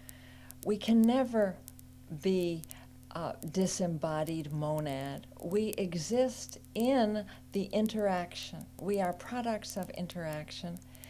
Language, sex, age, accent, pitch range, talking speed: English, female, 60-79, American, 150-210 Hz, 90 wpm